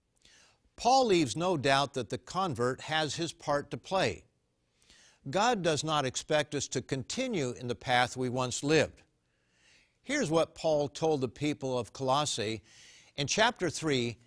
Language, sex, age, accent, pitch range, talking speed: English, male, 60-79, American, 115-160 Hz, 150 wpm